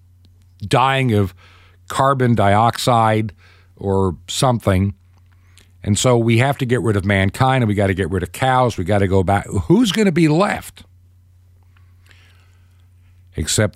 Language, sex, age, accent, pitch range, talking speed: English, male, 50-69, American, 90-125 Hz, 150 wpm